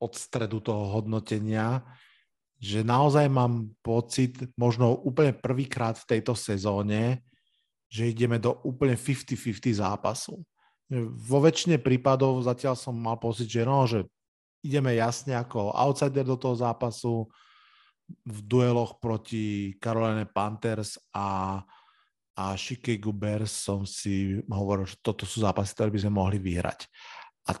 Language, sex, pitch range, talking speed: Slovak, male, 110-135 Hz, 125 wpm